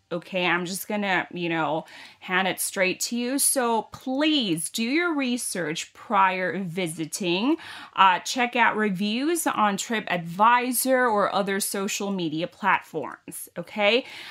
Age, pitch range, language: 30-49, 185-255 Hz, Thai